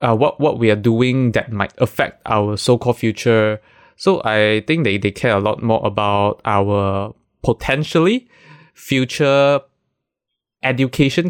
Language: English